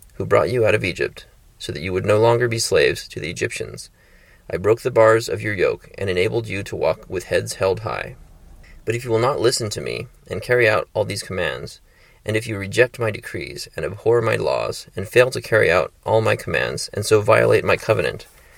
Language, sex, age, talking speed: English, male, 30-49, 225 wpm